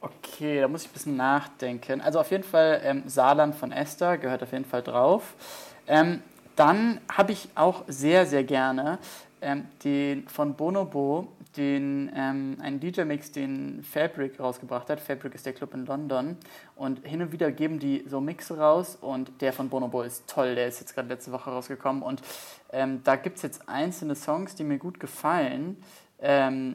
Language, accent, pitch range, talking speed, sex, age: German, German, 130-155 Hz, 180 wpm, male, 20-39